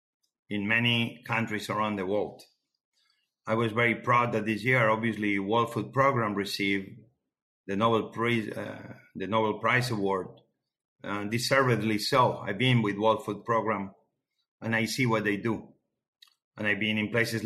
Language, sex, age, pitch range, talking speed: English, male, 50-69, 105-130 Hz, 150 wpm